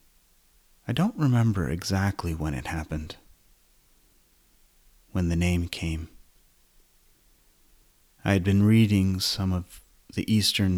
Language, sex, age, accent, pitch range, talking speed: English, male, 30-49, American, 65-100 Hz, 105 wpm